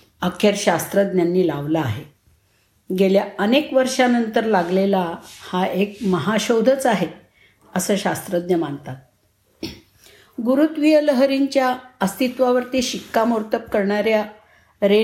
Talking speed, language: 85 wpm, Marathi